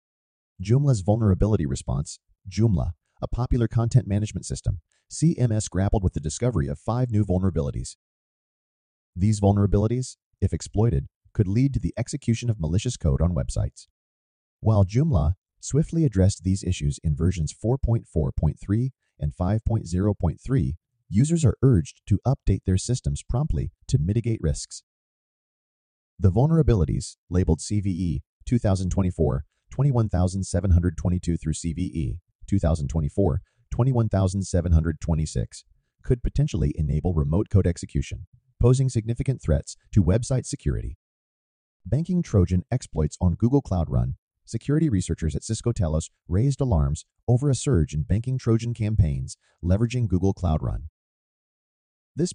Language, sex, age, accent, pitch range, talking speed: English, male, 30-49, American, 80-120 Hz, 115 wpm